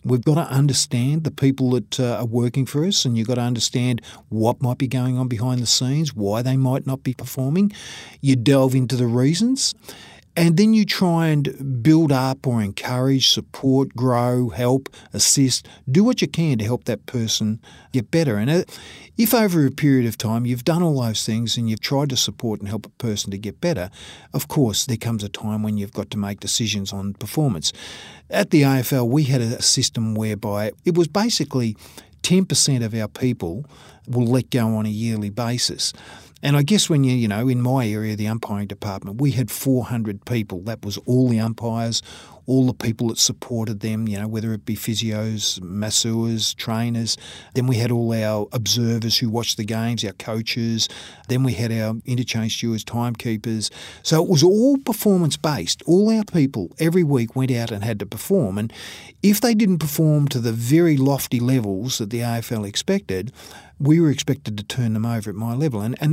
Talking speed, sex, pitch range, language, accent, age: 195 wpm, male, 110-140 Hz, English, Australian, 50-69